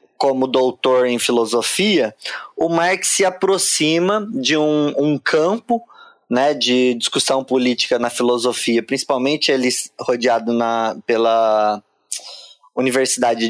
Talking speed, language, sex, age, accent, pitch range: 100 wpm, Portuguese, male, 20-39, Brazilian, 125-185 Hz